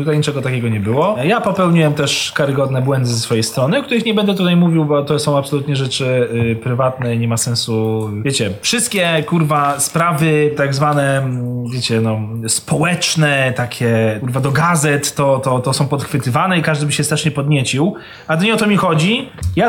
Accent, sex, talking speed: native, male, 180 wpm